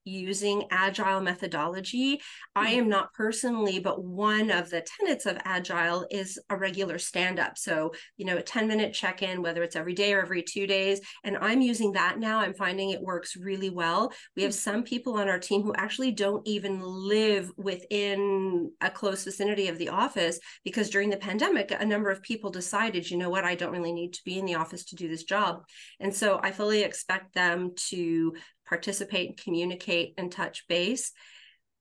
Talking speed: 190 wpm